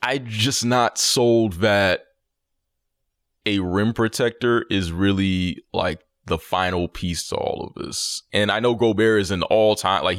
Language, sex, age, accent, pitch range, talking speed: English, male, 20-39, American, 90-115 Hz, 155 wpm